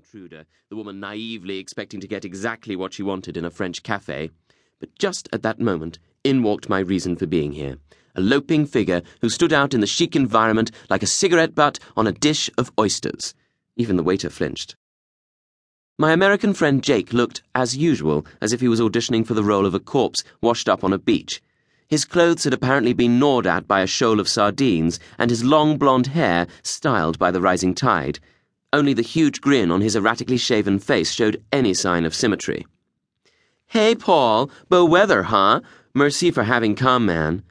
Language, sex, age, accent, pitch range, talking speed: English, male, 30-49, British, 90-140 Hz, 190 wpm